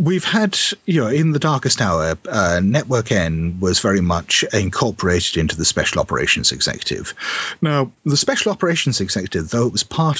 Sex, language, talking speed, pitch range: male, English, 170 wpm, 85-115 Hz